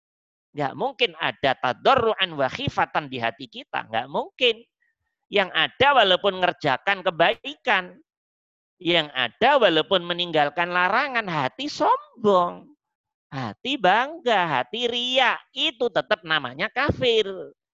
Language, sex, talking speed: Indonesian, male, 100 wpm